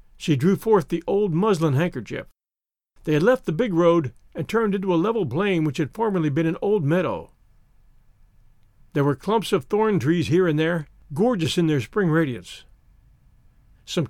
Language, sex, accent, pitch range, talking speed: English, male, American, 150-200 Hz, 175 wpm